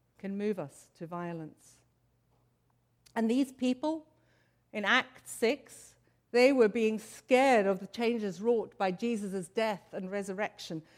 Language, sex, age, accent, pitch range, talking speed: English, female, 60-79, British, 200-260 Hz, 130 wpm